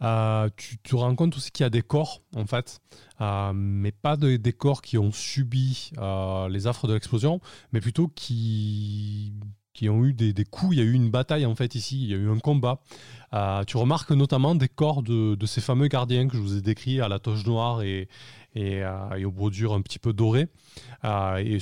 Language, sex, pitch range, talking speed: French, male, 105-135 Hz, 235 wpm